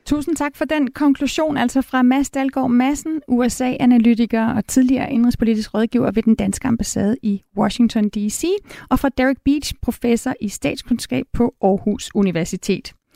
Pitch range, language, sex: 210-275 Hz, Danish, female